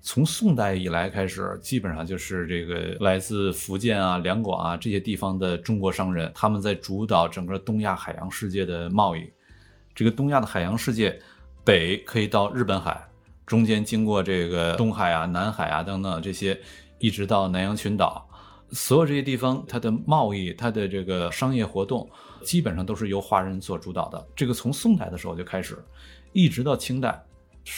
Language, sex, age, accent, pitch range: Chinese, male, 20-39, native, 95-120 Hz